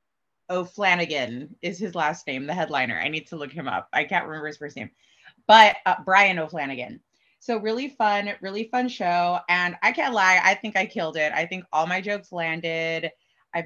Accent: American